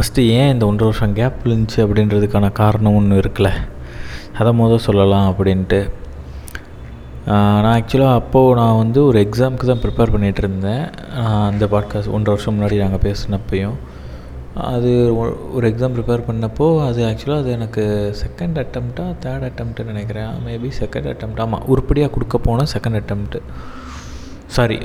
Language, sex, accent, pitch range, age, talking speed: Tamil, male, native, 105-125 Hz, 20-39, 135 wpm